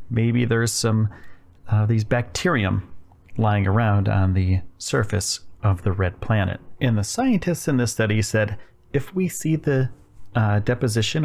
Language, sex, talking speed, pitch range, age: English, male, 150 wpm, 100-125 Hz, 40-59